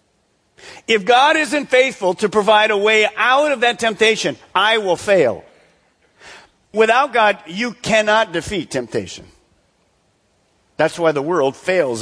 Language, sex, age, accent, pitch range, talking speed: English, male, 50-69, American, 180-255 Hz, 130 wpm